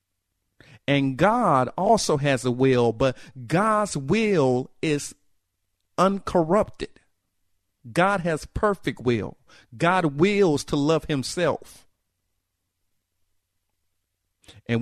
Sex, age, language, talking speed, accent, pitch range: male, 50-69, English, 85 wpm, American, 95-155 Hz